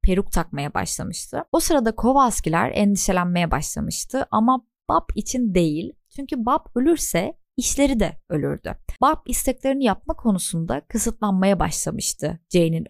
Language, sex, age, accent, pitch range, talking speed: Turkish, female, 20-39, native, 180-245 Hz, 115 wpm